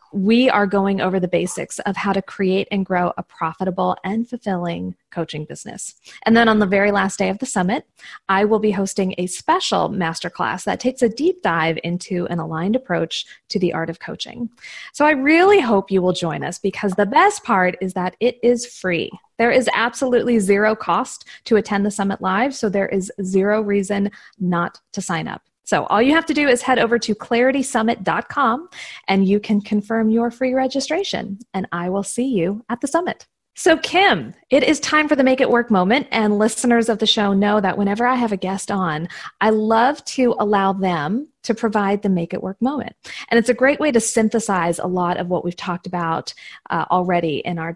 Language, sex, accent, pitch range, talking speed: English, female, American, 185-240 Hz, 205 wpm